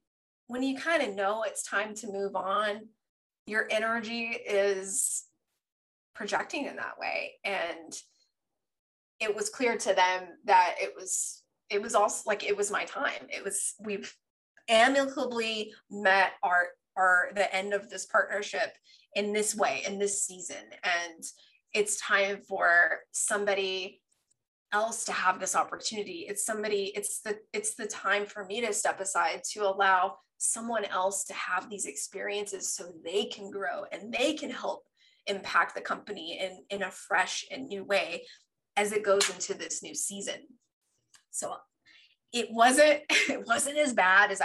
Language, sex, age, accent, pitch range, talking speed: English, female, 20-39, American, 195-235 Hz, 155 wpm